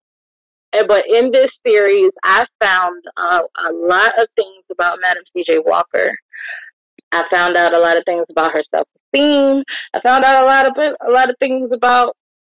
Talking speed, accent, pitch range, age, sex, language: 165 wpm, American, 185-245 Hz, 20-39, female, English